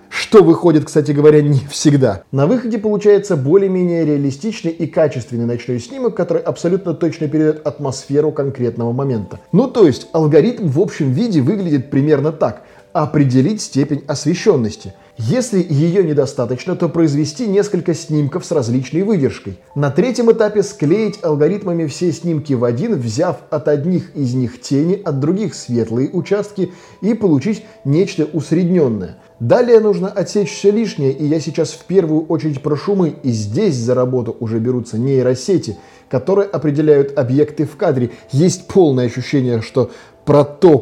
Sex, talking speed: male, 145 wpm